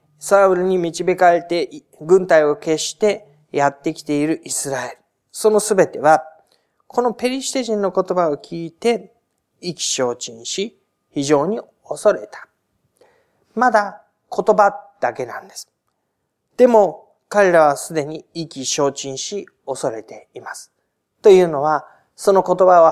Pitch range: 145-200 Hz